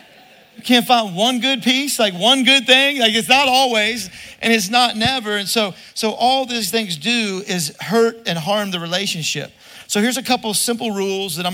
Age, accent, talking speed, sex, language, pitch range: 40-59, American, 205 wpm, male, English, 180-225 Hz